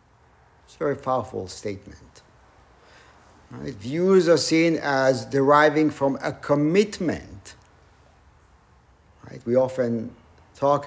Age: 60-79